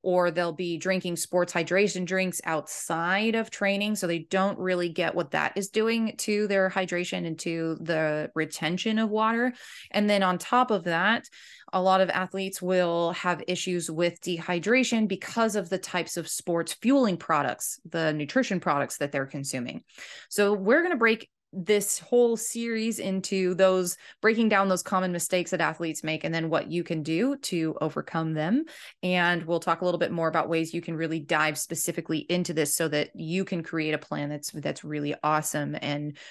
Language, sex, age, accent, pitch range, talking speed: English, female, 20-39, American, 160-205 Hz, 185 wpm